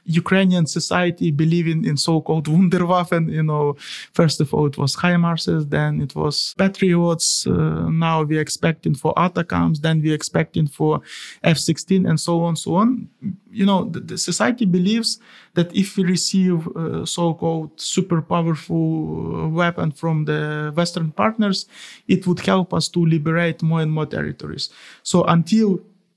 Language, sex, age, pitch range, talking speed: English, male, 20-39, 160-190 Hz, 150 wpm